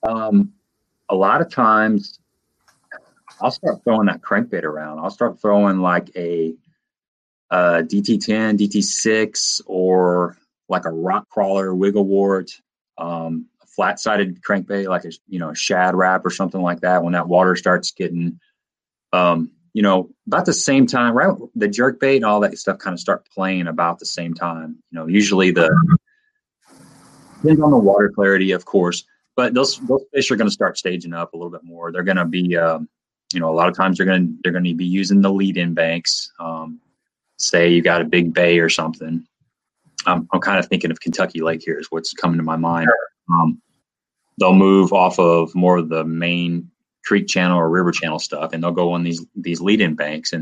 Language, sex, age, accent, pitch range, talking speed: English, male, 30-49, American, 85-100 Hz, 200 wpm